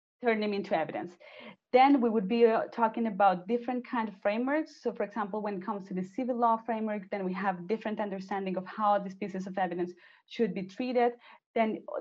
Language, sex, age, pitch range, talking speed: English, female, 20-39, 195-230 Hz, 195 wpm